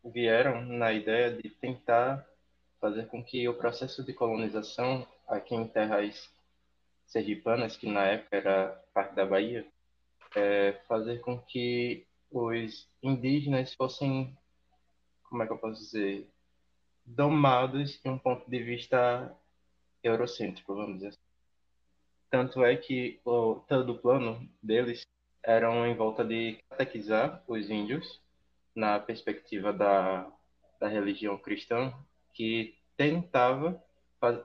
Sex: male